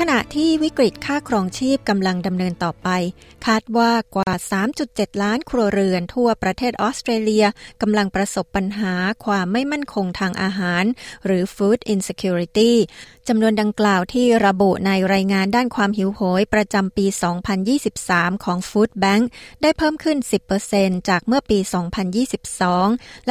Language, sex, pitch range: Thai, female, 195-235 Hz